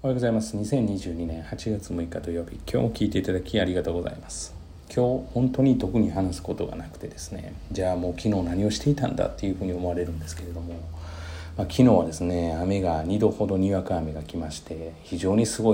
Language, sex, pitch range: Japanese, male, 85-110 Hz